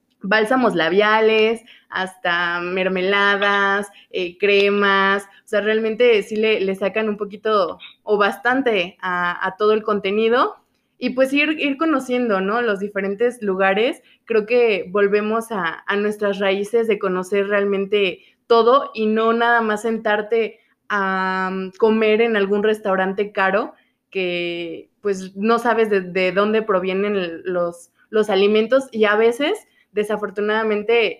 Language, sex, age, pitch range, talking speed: Spanish, female, 20-39, 195-225 Hz, 130 wpm